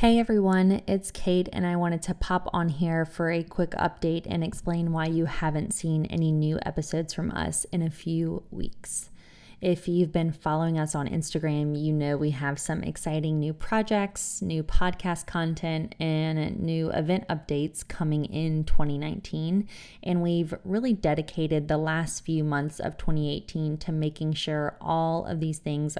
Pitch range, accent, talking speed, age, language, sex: 150-175 Hz, American, 165 wpm, 20-39, English, female